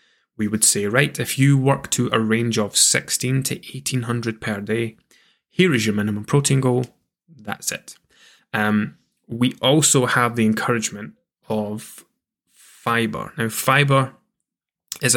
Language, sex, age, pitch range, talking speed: English, male, 10-29, 110-130 Hz, 140 wpm